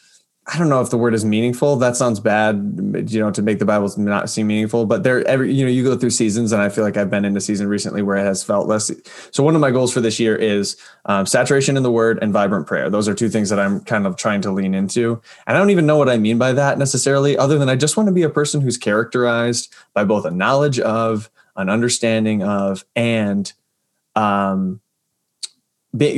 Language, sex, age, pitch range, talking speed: English, male, 20-39, 105-135 Hz, 245 wpm